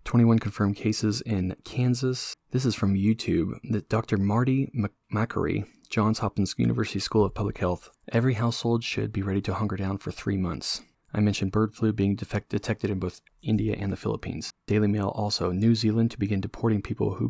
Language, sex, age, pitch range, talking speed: English, male, 20-39, 95-115 Hz, 180 wpm